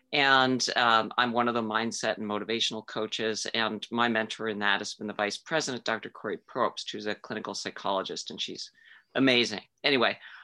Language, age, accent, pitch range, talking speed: English, 50-69, American, 120-155 Hz, 180 wpm